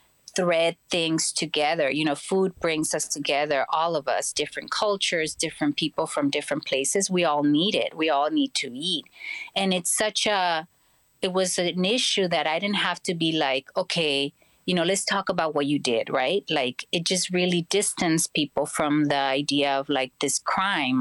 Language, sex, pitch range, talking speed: English, female, 150-185 Hz, 190 wpm